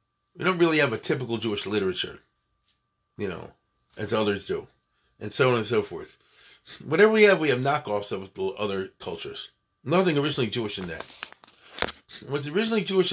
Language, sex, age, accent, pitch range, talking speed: English, male, 40-59, American, 105-155 Hz, 165 wpm